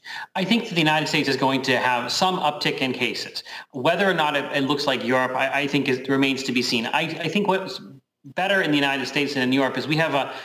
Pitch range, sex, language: 135-160 Hz, male, English